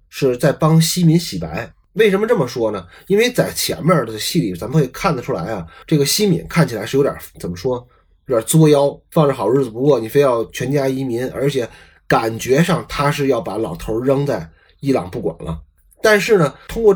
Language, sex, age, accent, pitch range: Chinese, male, 20-39, native, 120-165 Hz